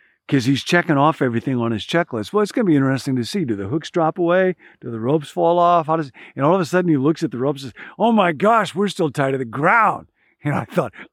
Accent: American